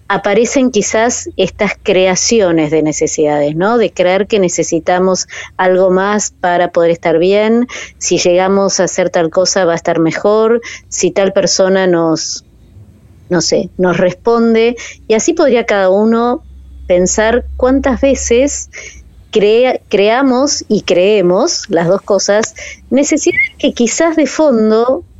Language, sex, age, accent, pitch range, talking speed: Spanish, female, 20-39, Argentinian, 180-235 Hz, 125 wpm